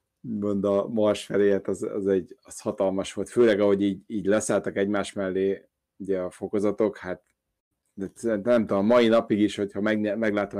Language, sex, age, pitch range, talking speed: Hungarian, male, 30-49, 95-110 Hz, 170 wpm